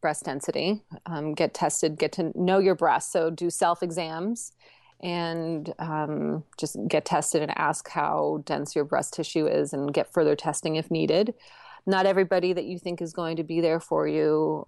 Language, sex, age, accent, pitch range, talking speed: English, female, 30-49, American, 155-180 Hz, 190 wpm